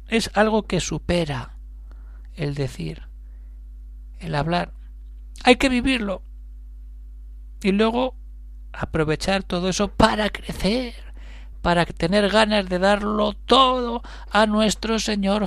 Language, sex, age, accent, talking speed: Spanish, male, 60-79, Spanish, 105 wpm